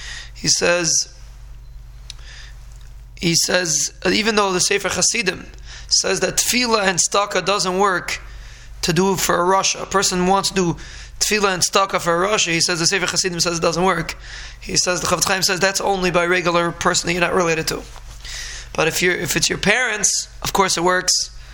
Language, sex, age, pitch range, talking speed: English, male, 20-39, 165-195 Hz, 185 wpm